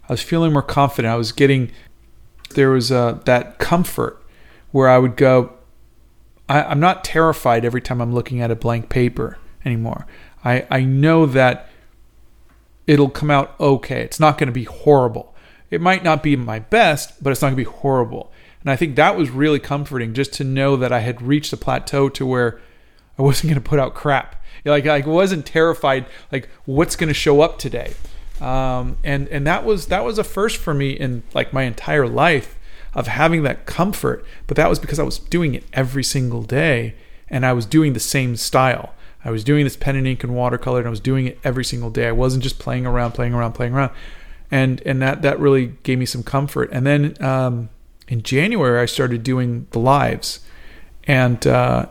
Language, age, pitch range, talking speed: English, 40-59, 120-145 Hz, 200 wpm